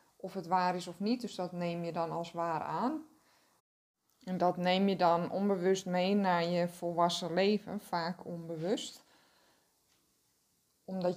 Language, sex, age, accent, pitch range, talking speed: Dutch, female, 20-39, Dutch, 170-200 Hz, 150 wpm